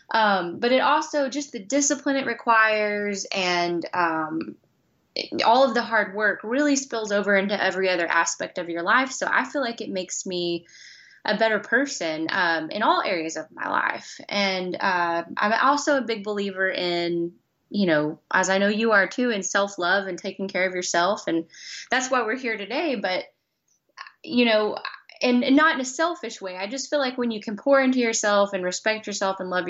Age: 10-29